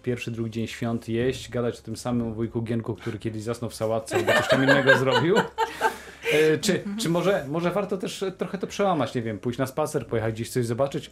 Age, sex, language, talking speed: 30-49, male, Polish, 210 wpm